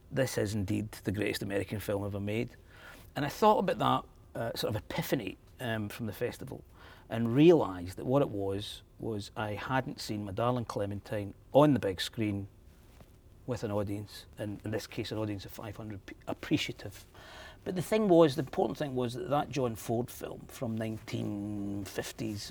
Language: English